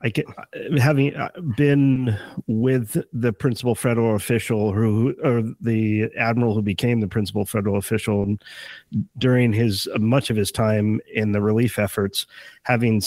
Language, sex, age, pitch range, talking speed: English, male, 40-59, 105-125 Hz, 140 wpm